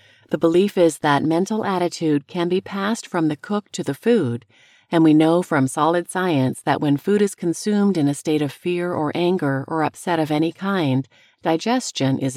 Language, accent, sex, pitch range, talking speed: English, American, female, 150-200 Hz, 195 wpm